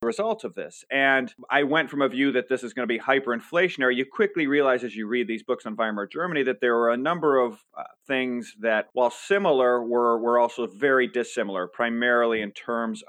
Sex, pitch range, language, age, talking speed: male, 110-130 Hz, English, 30-49, 210 wpm